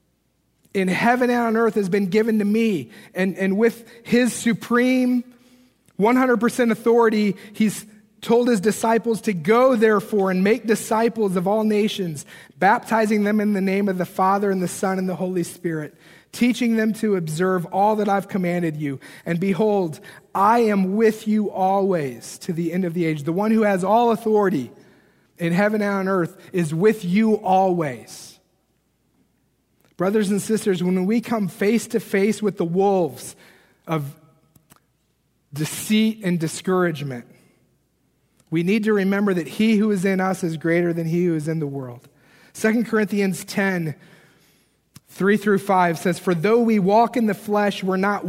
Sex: male